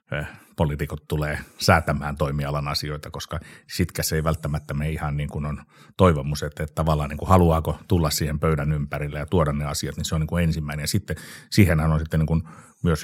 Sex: male